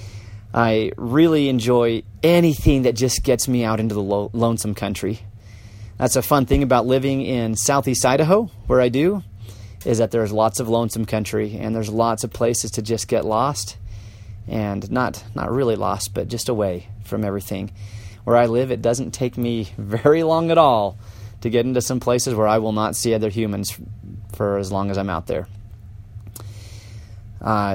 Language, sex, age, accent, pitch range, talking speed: English, male, 30-49, American, 100-120 Hz, 175 wpm